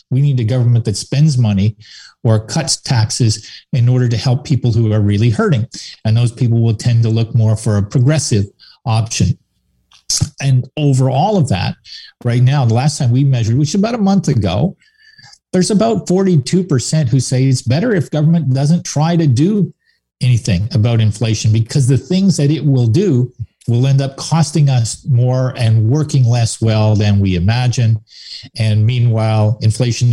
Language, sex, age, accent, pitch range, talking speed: English, male, 50-69, American, 110-145 Hz, 175 wpm